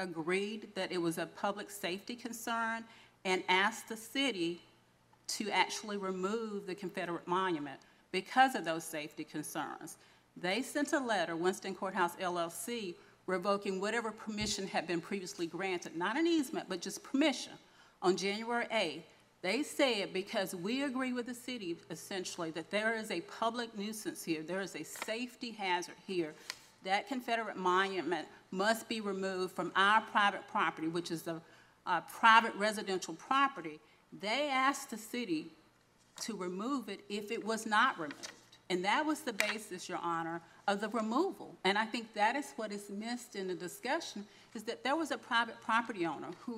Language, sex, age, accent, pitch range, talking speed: English, female, 40-59, American, 180-240 Hz, 165 wpm